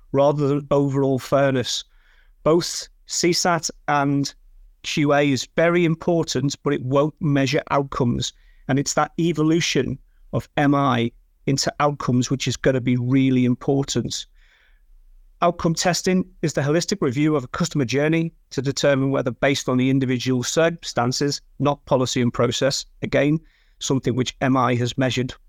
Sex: male